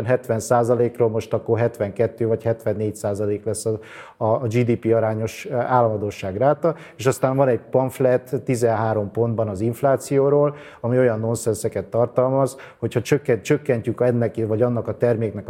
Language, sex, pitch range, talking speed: Hungarian, male, 110-135 Hz, 130 wpm